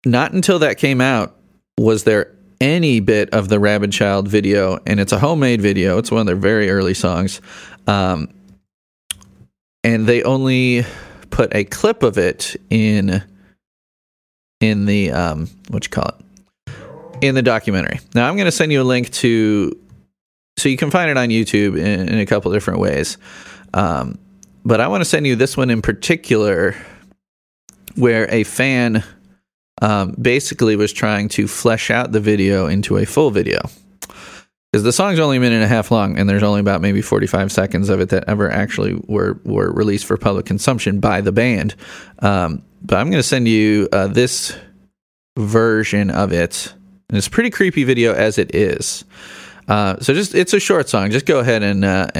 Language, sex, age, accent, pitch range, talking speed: English, male, 30-49, American, 100-125 Hz, 185 wpm